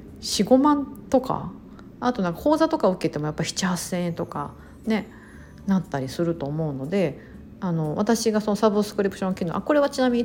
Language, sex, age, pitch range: Japanese, female, 50-69, 170-245 Hz